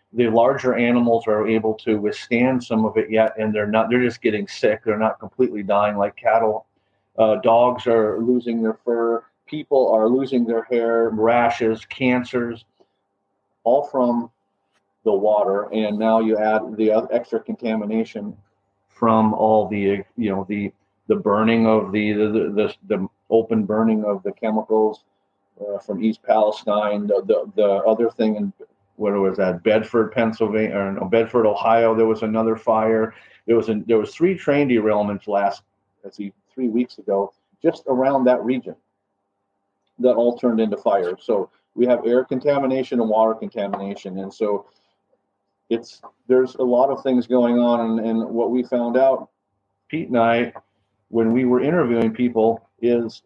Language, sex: English, male